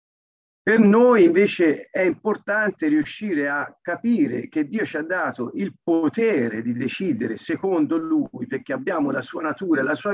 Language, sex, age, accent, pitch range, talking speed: Italian, male, 50-69, native, 185-305 Hz, 155 wpm